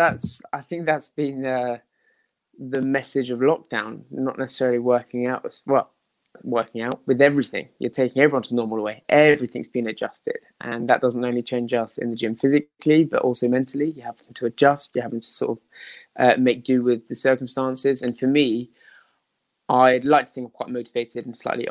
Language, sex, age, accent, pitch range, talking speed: English, male, 20-39, British, 120-135 Hz, 190 wpm